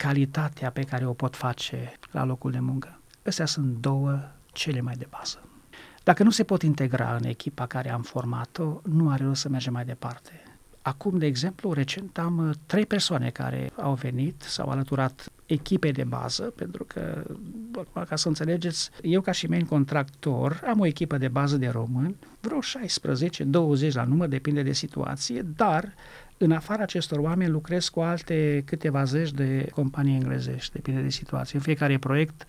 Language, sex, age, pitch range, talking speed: Romanian, male, 40-59, 130-170 Hz, 175 wpm